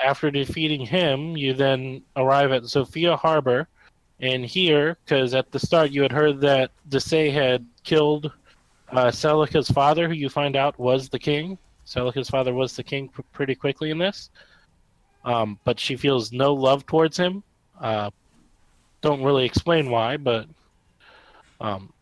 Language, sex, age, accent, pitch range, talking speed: English, male, 20-39, American, 125-150 Hz, 155 wpm